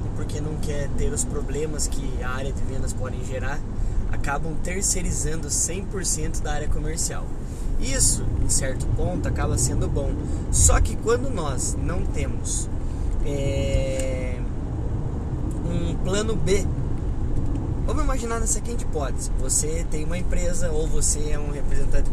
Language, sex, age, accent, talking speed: Portuguese, male, 20-39, Brazilian, 135 wpm